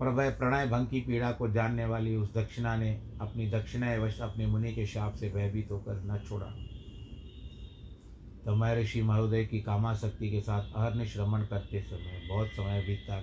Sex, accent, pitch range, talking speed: male, native, 105-125 Hz, 175 wpm